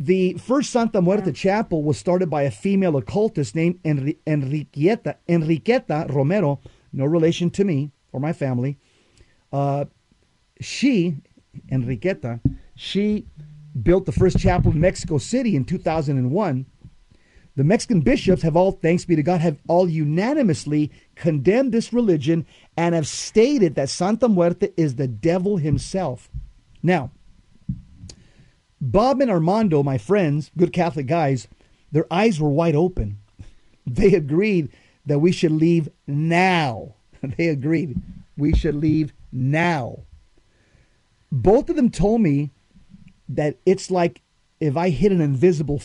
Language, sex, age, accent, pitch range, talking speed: English, male, 40-59, American, 140-180 Hz, 130 wpm